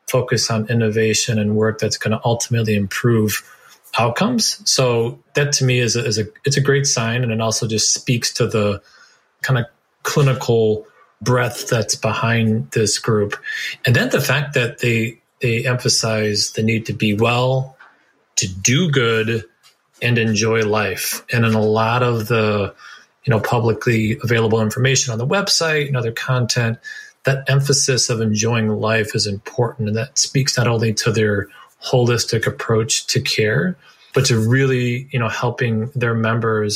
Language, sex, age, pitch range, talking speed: English, male, 30-49, 110-130 Hz, 160 wpm